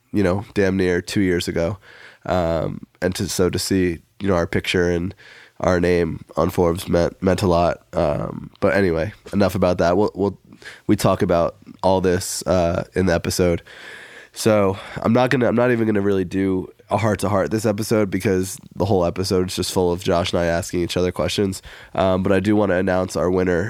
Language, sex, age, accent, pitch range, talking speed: English, male, 20-39, American, 90-100 Hz, 215 wpm